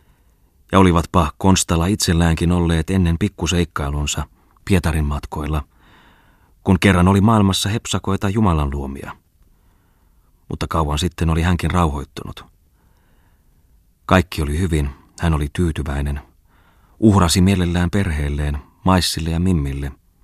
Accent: native